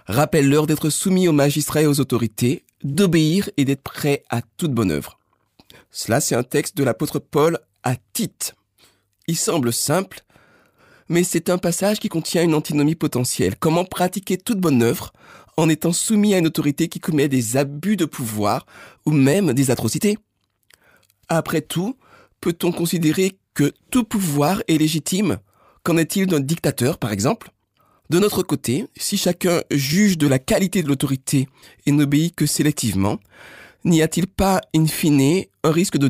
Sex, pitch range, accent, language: male, 135-175 Hz, French, French